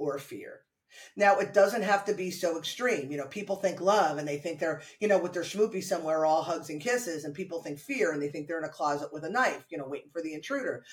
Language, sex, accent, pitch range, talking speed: English, female, American, 170-250 Hz, 270 wpm